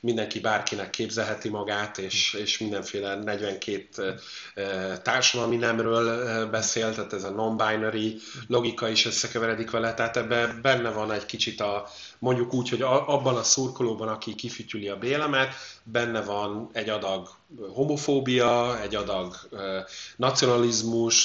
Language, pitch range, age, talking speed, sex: Hungarian, 105-125 Hz, 30-49, 125 wpm, male